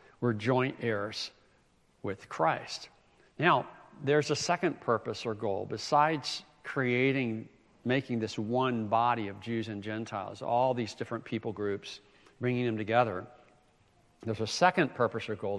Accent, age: American, 60-79